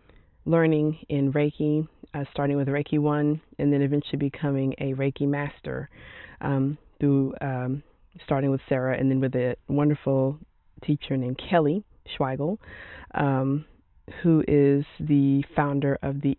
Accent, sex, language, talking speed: American, female, English, 135 wpm